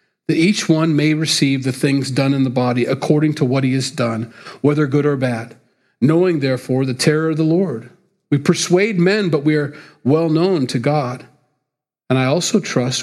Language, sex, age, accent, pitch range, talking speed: English, male, 40-59, American, 140-185 Hz, 195 wpm